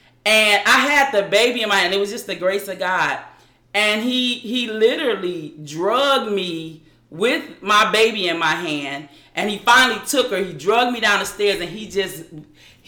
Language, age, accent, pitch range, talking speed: English, 40-59, American, 190-265 Hz, 190 wpm